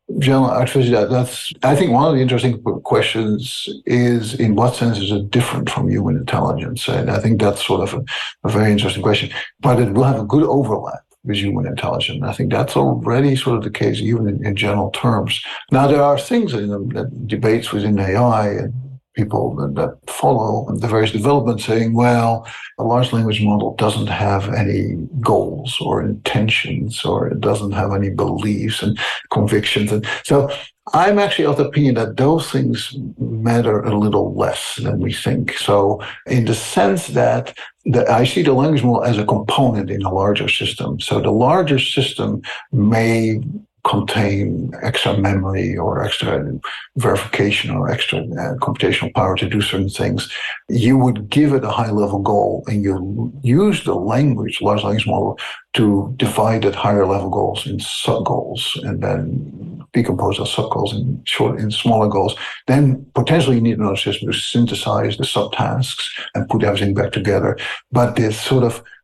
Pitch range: 105-130 Hz